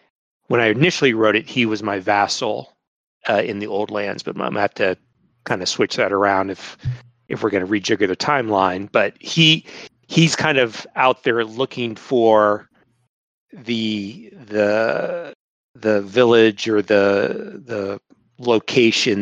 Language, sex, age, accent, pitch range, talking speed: English, male, 40-59, American, 100-125 Hz, 155 wpm